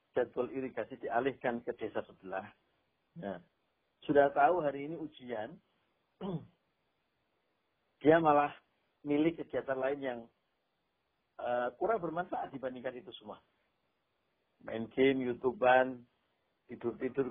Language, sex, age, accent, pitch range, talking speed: Indonesian, male, 50-69, native, 115-150 Hz, 95 wpm